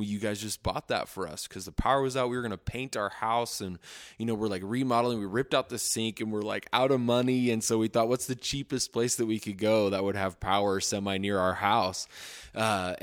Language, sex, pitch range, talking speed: English, male, 95-115 Hz, 260 wpm